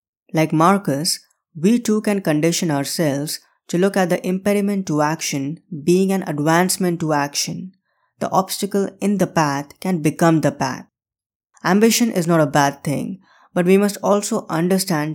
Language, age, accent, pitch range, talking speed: English, 20-39, Indian, 150-190 Hz, 155 wpm